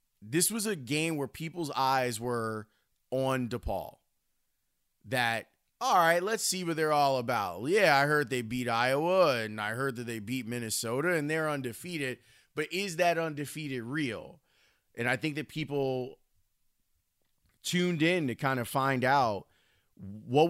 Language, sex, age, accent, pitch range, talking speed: English, male, 30-49, American, 115-140 Hz, 155 wpm